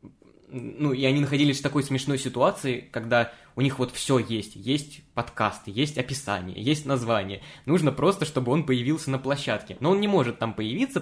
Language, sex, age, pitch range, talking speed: Russian, male, 20-39, 115-145 Hz, 180 wpm